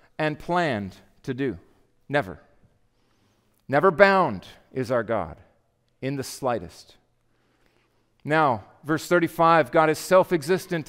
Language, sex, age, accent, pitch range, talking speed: English, male, 40-59, American, 145-200 Hz, 105 wpm